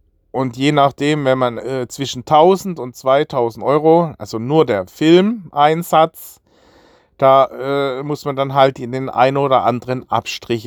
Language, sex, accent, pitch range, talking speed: German, male, German, 125-160 Hz, 150 wpm